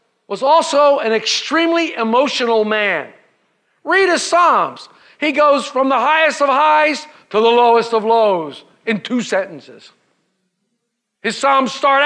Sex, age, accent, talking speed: male, 50-69, American, 135 wpm